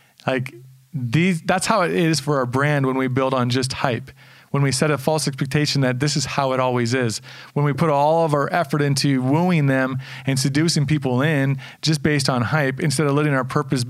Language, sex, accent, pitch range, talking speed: English, male, American, 130-150 Hz, 215 wpm